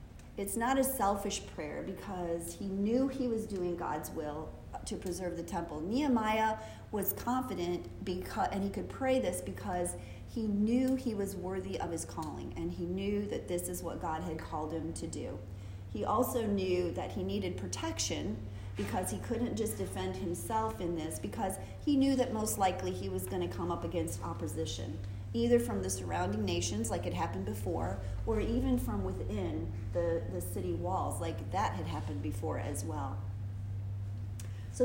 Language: English